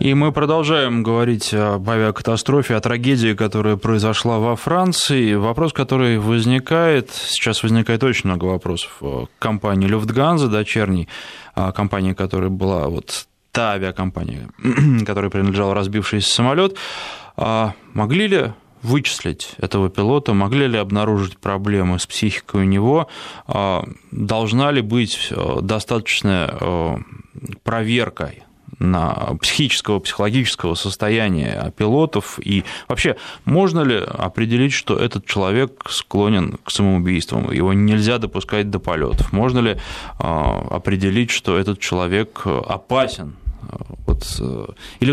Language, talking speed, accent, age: Russian, 110 wpm, native, 20-39